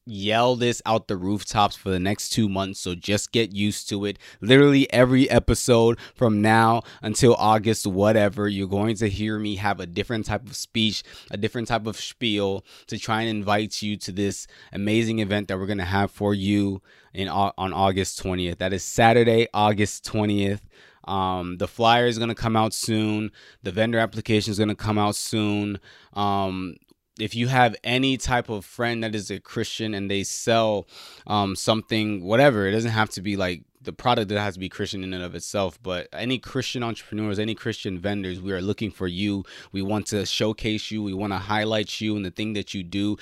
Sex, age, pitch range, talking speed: male, 20-39, 100-115 Hz, 205 wpm